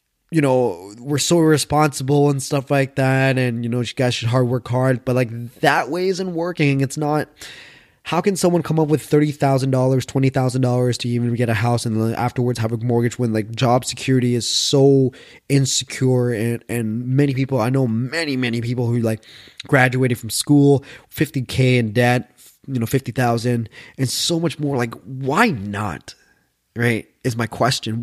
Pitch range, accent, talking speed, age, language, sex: 120-140 Hz, American, 180 wpm, 20-39, English, male